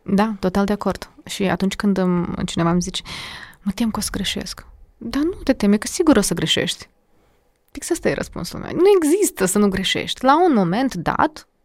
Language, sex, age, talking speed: Romanian, female, 20-39, 200 wpm